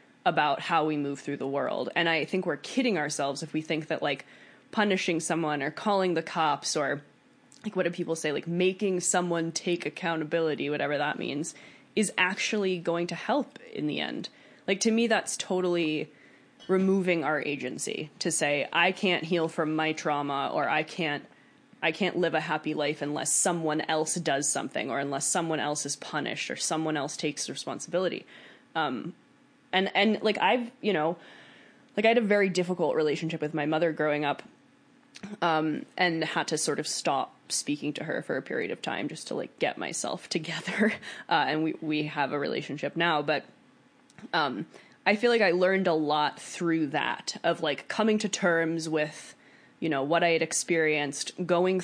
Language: English